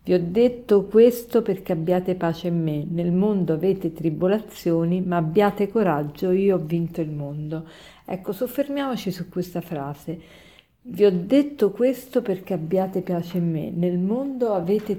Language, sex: Italian, female